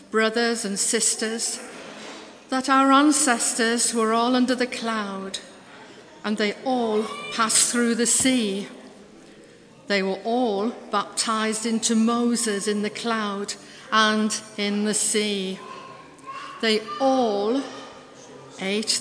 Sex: female